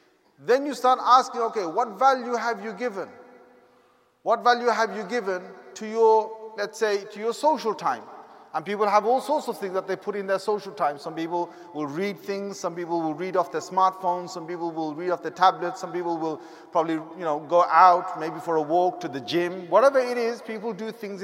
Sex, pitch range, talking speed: male, 180-230 Hz, 220 wpm